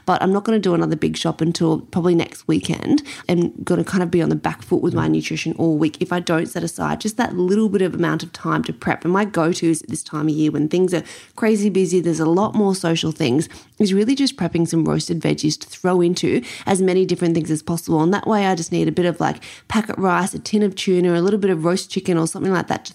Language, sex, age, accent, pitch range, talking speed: English, female, 20-39, Australian, 165-195 Hz, 275 wpm